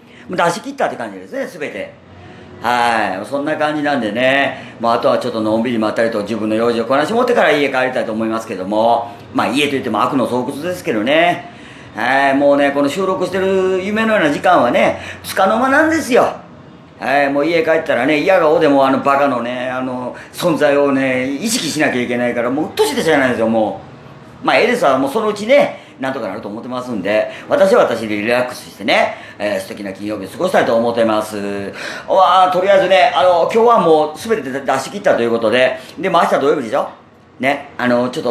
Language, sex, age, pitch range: Japanese, female, 40-59, 115-160 Hz